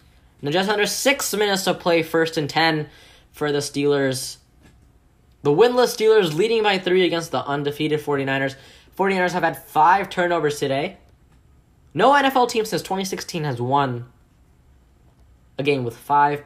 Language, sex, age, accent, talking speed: English, male, 10-29, American, 145 wpm